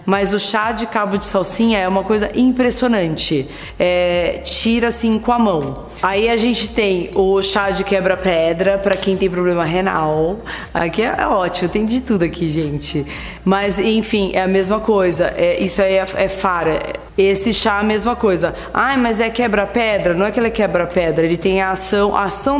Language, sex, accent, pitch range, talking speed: Portuguese, female, Brazilian, 180-215 Hz, 190 wpm